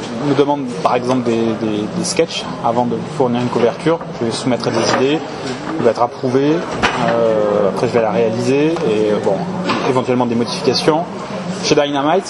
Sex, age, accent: male, 20-39, French